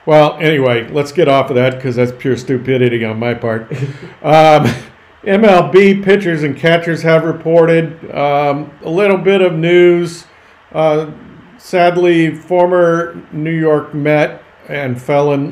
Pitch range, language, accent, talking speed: 130-165 Hz, English, American, 135 wpm